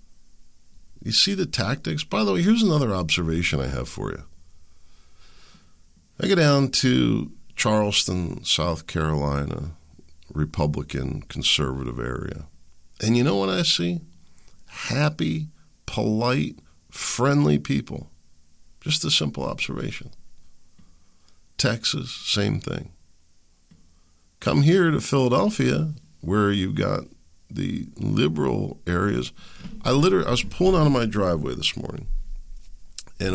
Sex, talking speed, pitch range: male, 110 wpm, 75-110 Hz